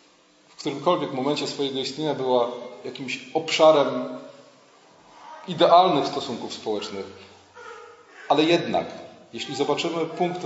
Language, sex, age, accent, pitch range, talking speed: Polish, male, 30-49, native, 130-180 Hz, 90 wpm